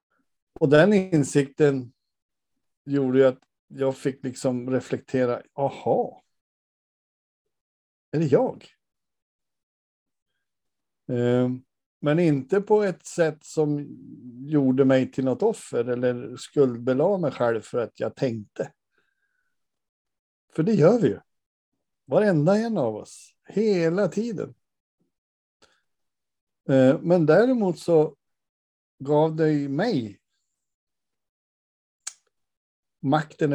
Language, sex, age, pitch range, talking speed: Swedish, male, 50-69, 125-165 Hz, 90 wpm